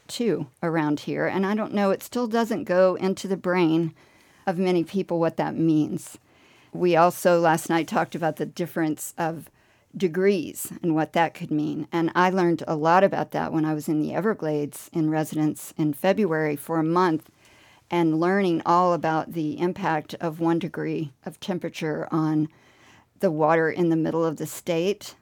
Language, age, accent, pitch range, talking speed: English, 50-69, American, 155-190 Hz, 180 wpm